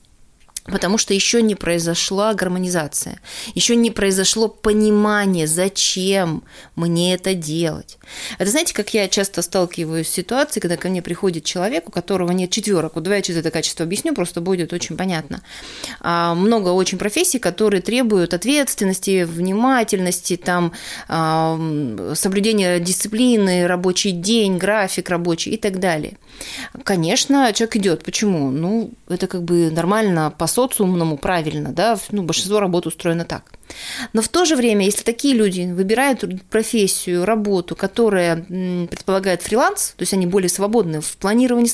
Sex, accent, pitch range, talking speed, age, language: female, native, 170-215 Hz, 140 wpm, 30-49, Russian